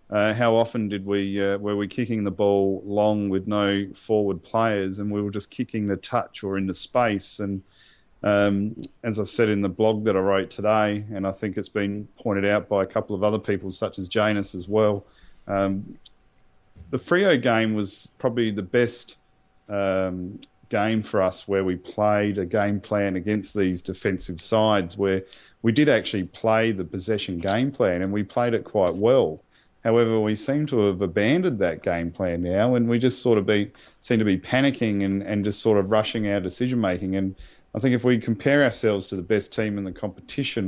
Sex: male